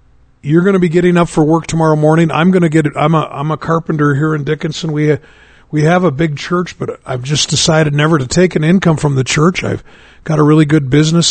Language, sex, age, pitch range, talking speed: English, male, 50-69, 140-170 Hz, 250 wpm